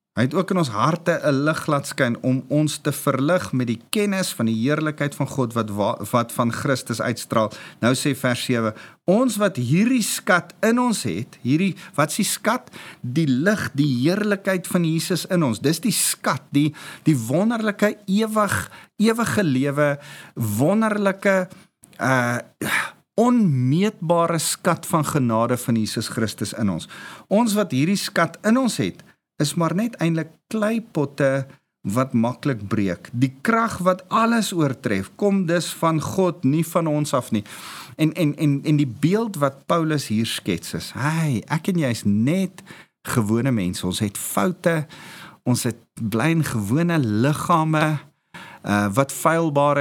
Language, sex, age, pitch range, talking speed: English, male, 50-69, 130-185 Hz, 155 wpm